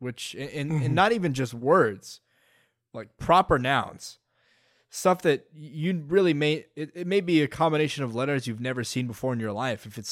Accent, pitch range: American, 115-145 Hz